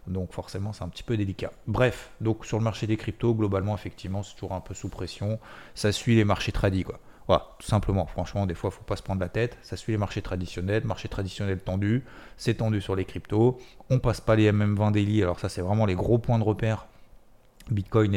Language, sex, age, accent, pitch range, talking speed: French, male, 30-49, French, 95-110 Hz, 240 wpm